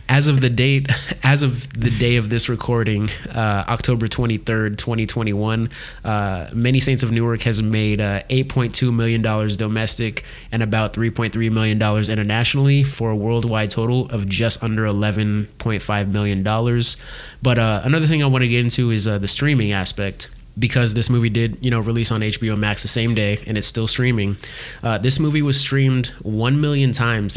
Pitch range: 110-125 Hz